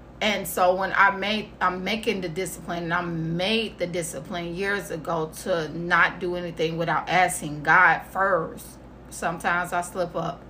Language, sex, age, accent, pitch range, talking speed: English, female, 30-49, American, 160-180 Hz, 160 wpm